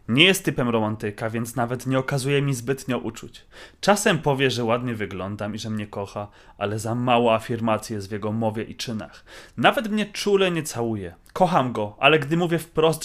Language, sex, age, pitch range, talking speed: Polish, male, 30-49, 110-150 Hz, 190 wpm